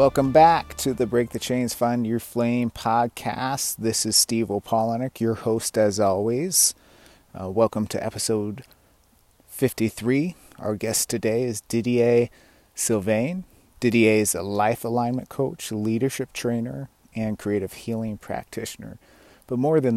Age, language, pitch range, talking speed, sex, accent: 30-49, English, 105-120 Hz, 135 wpm, male, American